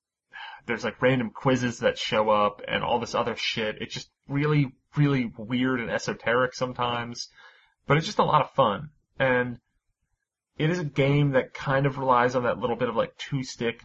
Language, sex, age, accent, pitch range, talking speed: English, male, 30-49, American, 105-130 Hz, 185 wpm